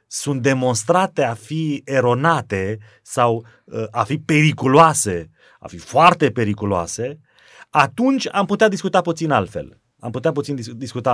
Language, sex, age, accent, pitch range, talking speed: Romanian, male, 30-49, native, 125-165 Hz, 125 wpm